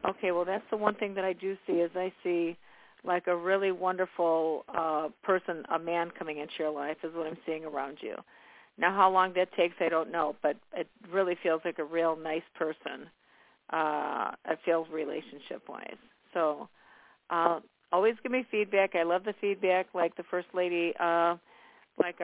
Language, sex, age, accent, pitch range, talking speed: English, female, 50-69, American, 160-195 Hz, 185 wpm